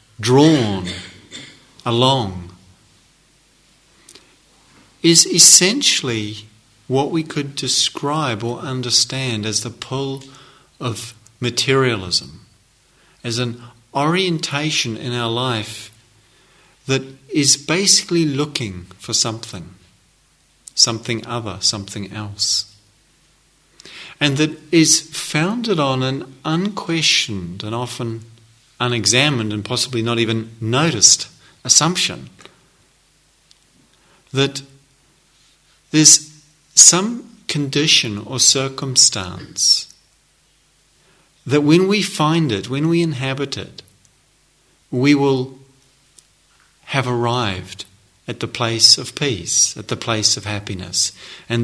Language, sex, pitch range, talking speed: English, male, 110-140 Hz, 90 wpm